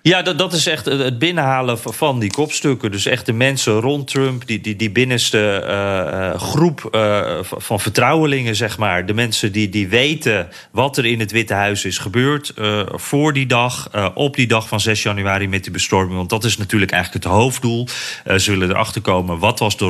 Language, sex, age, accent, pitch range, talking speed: Dutch, male, 30-49, Dutch, 100-130 Hz, 210 wpm